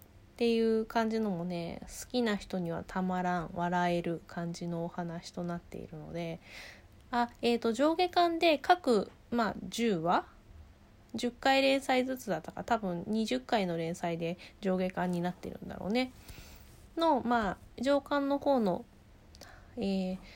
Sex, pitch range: female, 175-255 Hz